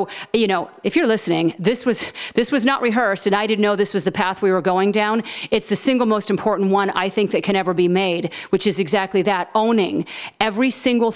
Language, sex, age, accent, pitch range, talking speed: English, female, 40-59, American, 185-220 Hz, 230 wpm